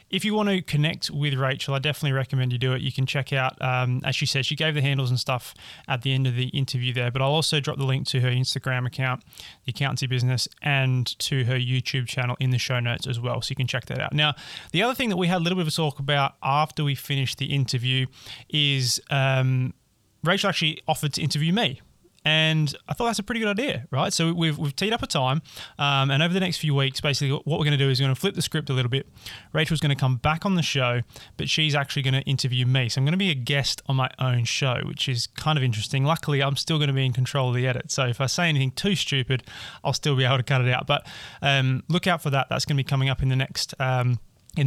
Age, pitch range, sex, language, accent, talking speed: 20-39, 130-150 Hz, male, English, Australian, 275 wpm